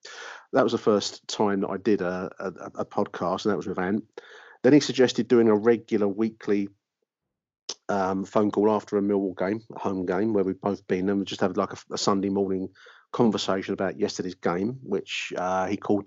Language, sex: English, male